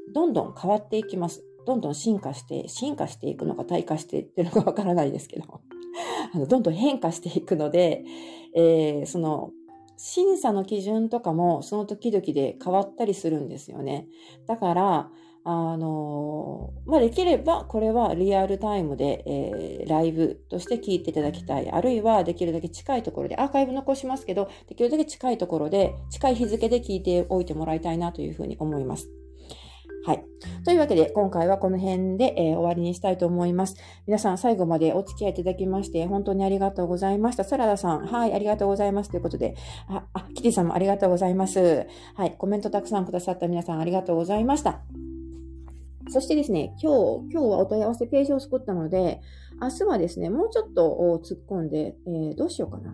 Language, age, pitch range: Japanese, 40-59, 160-220 Hz